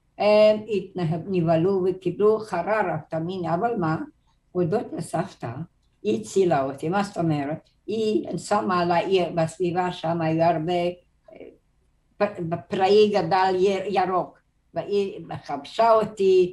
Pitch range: 170-205 Hz